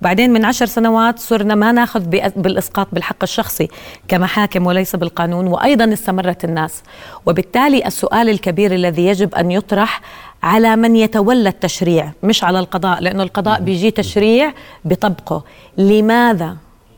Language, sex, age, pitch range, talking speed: Arabic, female, 30-49, 180-230 Hz, 125 wpm